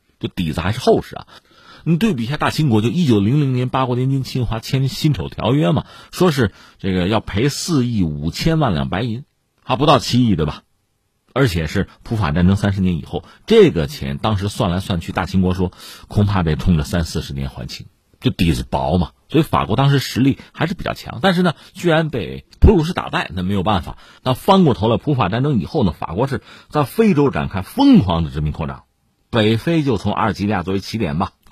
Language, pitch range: Chinese, 95-145 Hz